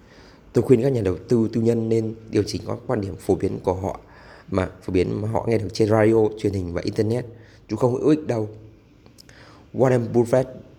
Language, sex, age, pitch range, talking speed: Vietnamese, male, 20-39, 100-120 Hz, 210 wpm